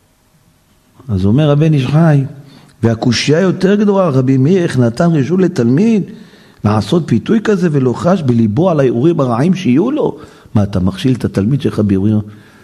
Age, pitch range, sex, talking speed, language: 50-69, 105-145 Hz, male, 150 wpm, Hebrew